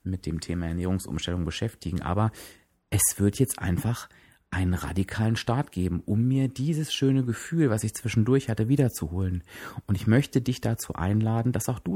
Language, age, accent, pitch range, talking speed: German, 30-49, German, 100-125 Hz, 165 wpm